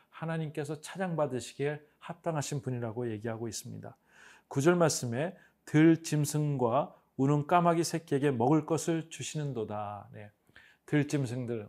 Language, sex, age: Korean, male, 40-59